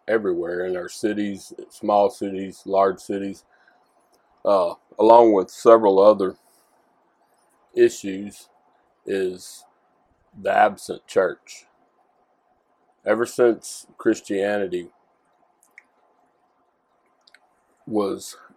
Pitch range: 90-105 Hz